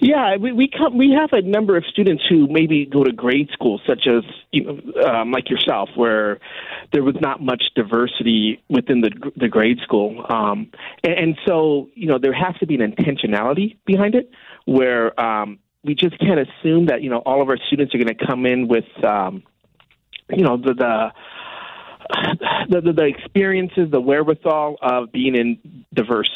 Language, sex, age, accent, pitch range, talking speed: English, male, 40-59, American, 120-165 Hz, 185 wpm